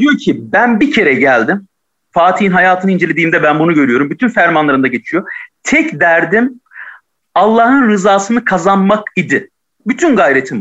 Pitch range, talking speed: 190-275 Hz, 130 wpm